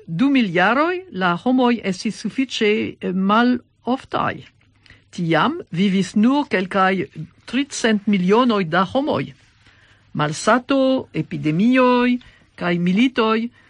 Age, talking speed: 50-69, 90 wpm